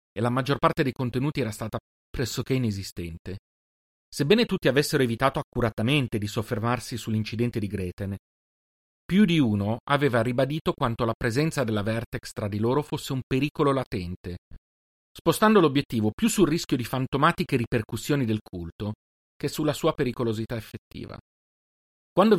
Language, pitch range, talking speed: Italian, 105-145 Hz, 140 wpm